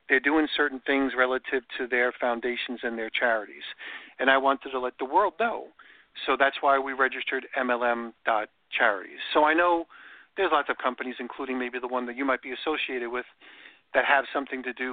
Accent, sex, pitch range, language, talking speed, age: American, male, 125-150 Hz, English, 190 wpm, 50-69